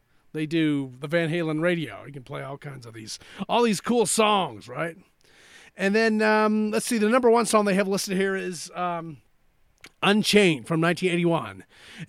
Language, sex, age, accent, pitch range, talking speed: English, male, 30-49, American, 160-210 Hz, 180 wpm